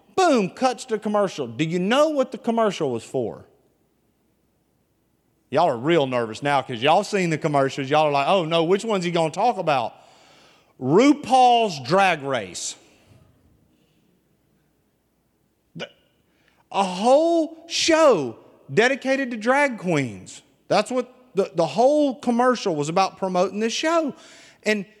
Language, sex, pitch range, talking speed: English, male, 190-270 Hz, 135 wpm